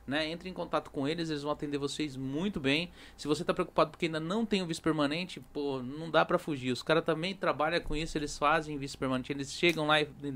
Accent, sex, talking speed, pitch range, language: Brazilian, male, 250 wpm, 145-200 Hz, Portuguese